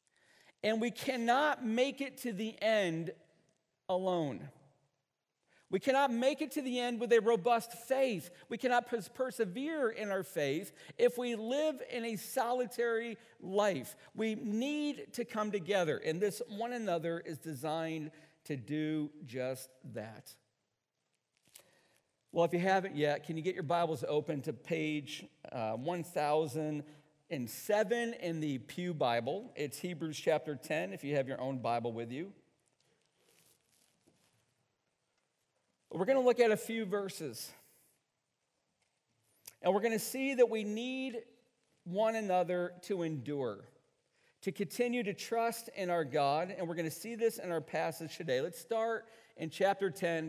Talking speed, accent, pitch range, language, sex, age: 145 wpm, American, 150-230 Hz, English, male, 50-69